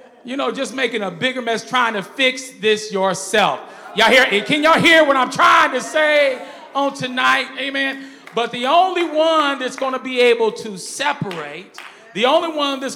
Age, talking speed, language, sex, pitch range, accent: 40-59, 185 wpm, English, male, 240-300 Hz, American